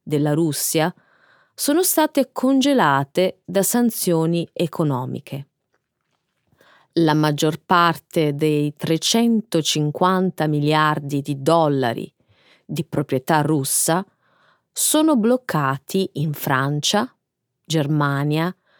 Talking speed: 75 wpm